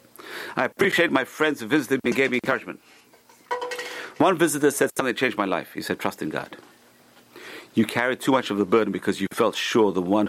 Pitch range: 95-120 Hz